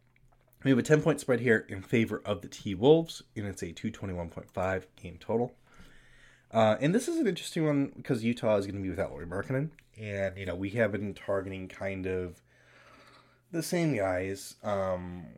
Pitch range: 95-125 Hz